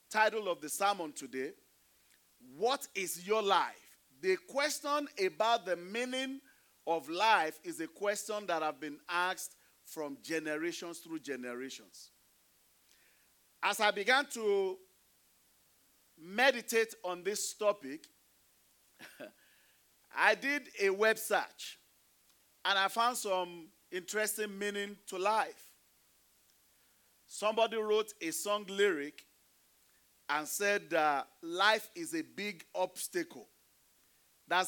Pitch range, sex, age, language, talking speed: 165-260 Hz, male, 40-59, English, 105 wpm